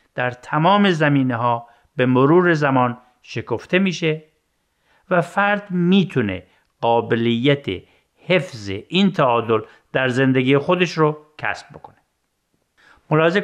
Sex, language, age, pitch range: male, Persian, 50-69, 120-160 Hz